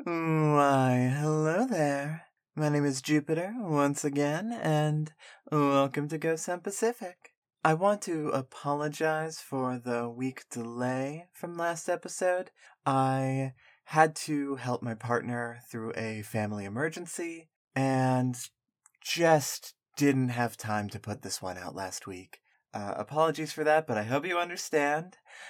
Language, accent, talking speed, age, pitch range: English, American, 135 wpm, 20-39, 130-165 Hz